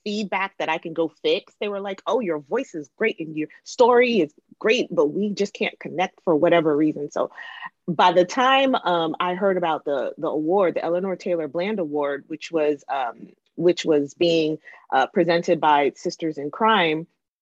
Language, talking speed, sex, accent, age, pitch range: English, 190 wpm, female, American, 30-49, 155-200 Hz